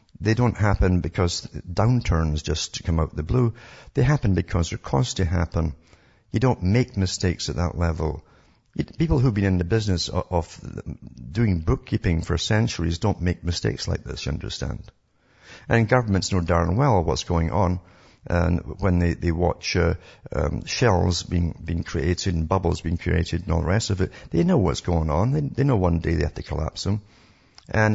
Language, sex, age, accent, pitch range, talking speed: English, male, 50-69, British, 85-105 Hz, 195 wpm